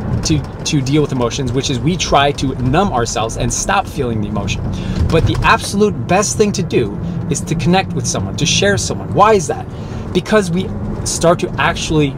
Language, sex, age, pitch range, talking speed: English, male, 30-49, 115-150 Hz, 195 wpm